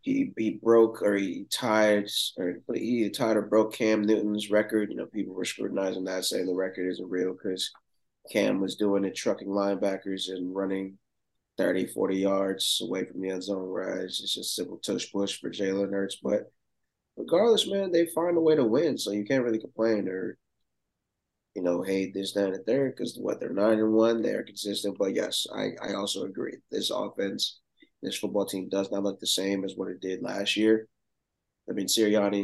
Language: English